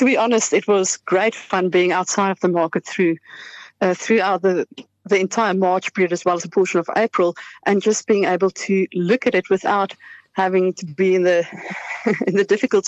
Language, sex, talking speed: English, female, 205 wpm